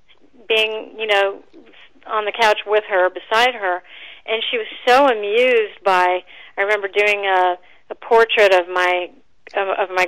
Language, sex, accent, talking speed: English, female, American, 155 wpm